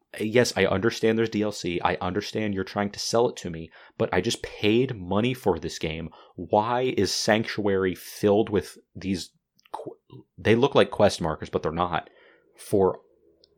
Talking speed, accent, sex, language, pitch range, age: 165 wpm, American, male, English, 90-115 Hz, 30-49